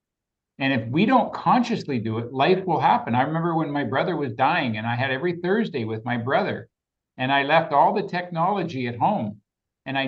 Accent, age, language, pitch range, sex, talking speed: American, 50-69, English, 120-170 Hz, male, 210 wpm